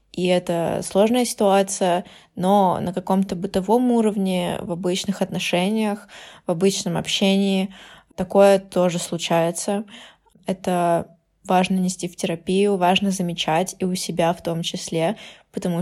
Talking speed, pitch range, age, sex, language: 120 wpm, 175-205 Hz, 20-39, female, Russian